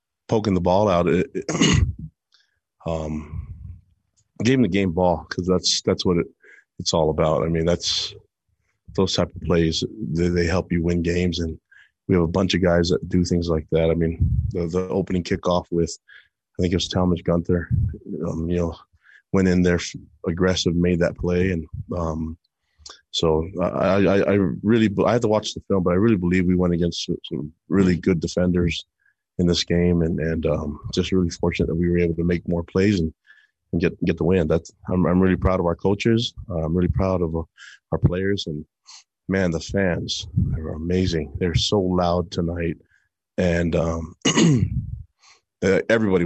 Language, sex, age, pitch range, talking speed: English, male, 30-49, 85-95 Hz, 190 wpm